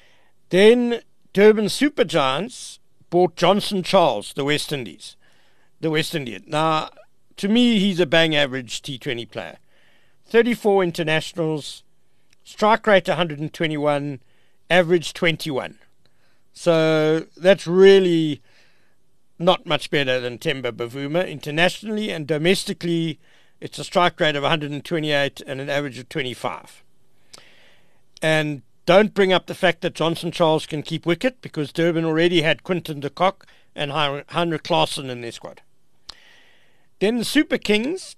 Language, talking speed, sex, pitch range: English, 125 wpm, male, 150-185 Hz